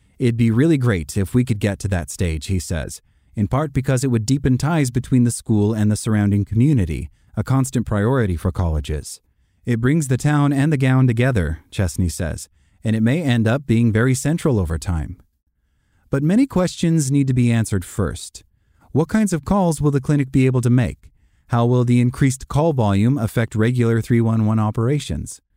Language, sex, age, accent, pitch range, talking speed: English, male, 30-49, American, 100-135 Hz, 190 wpm